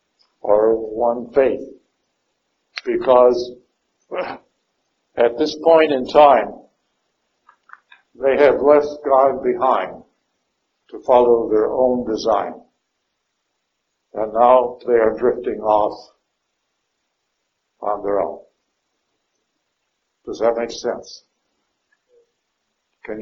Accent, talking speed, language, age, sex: American, 85 wpm, English, 60-79, male